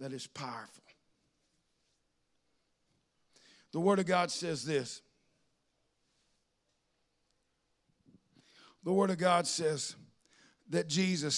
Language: English